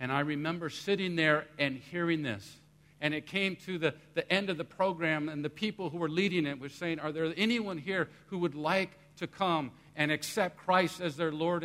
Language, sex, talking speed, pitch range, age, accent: English, male, 215 wpm, 150-180 Hz, 50-69, American